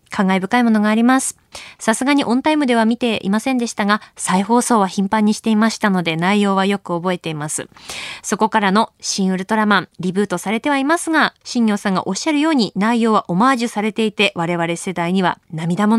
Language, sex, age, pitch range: Japanese, female, 20-39, 190-275 Hz